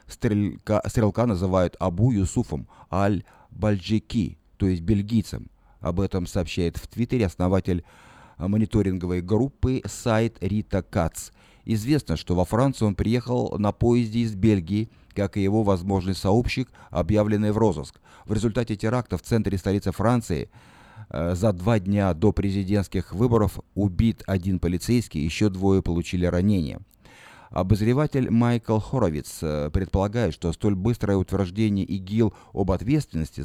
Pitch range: 90-115 Hz